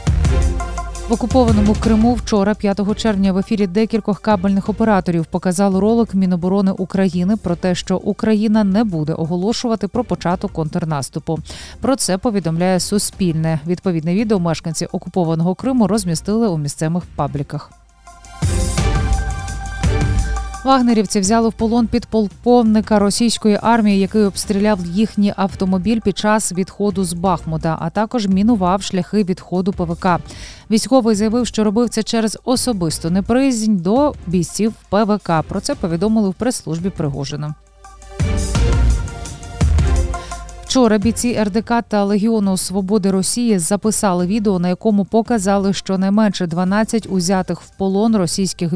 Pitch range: 180-220 Hz